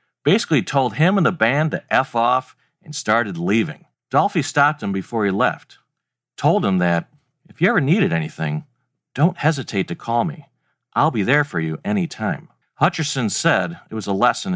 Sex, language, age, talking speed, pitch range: male, English, 40-59, 175 wpm, 110-175 Hz